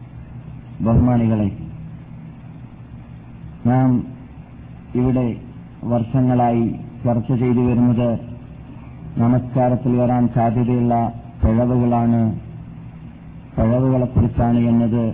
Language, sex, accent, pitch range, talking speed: Malayalam, male, native, 115-130 Hz, 50 wpm